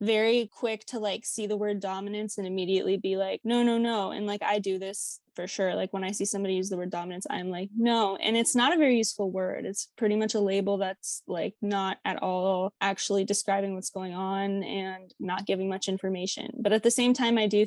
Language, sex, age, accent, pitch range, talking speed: English, female, 20-39, American, 195-215 Hz, 230 wpm